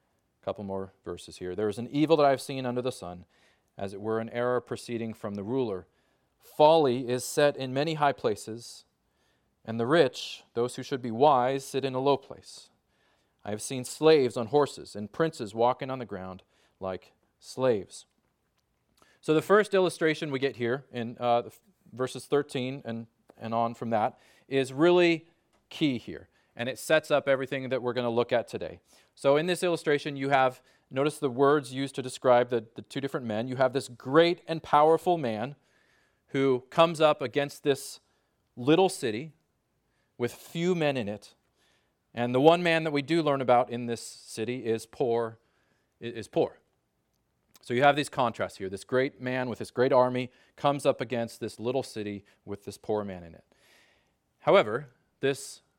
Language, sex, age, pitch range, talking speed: English, male, 30-49, 115-145 Hz, 185 wpm